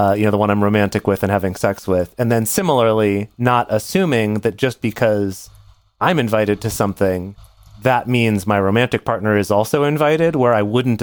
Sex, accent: male, American